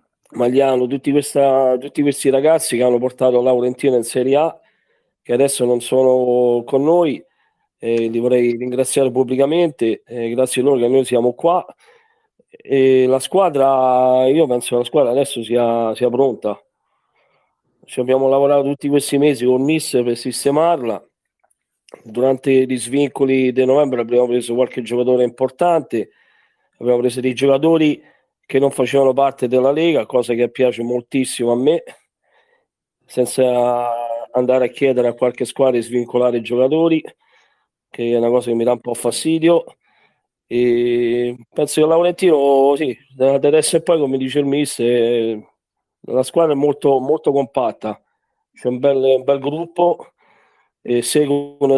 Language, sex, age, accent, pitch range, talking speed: Italian, male, 40-59, native, 125-145 Hz, 145 wpm